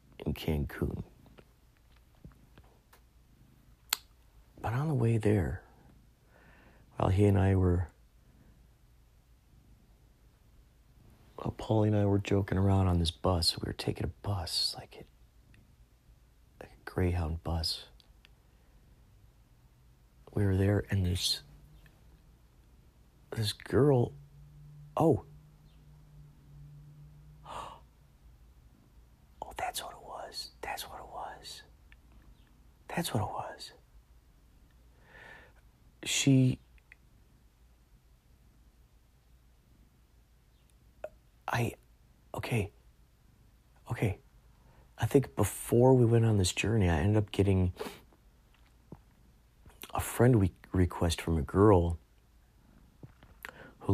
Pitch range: 65-110 Hz